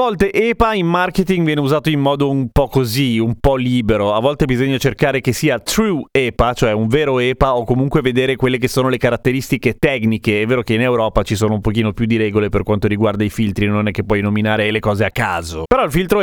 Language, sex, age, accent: Italian, male, 30-49, native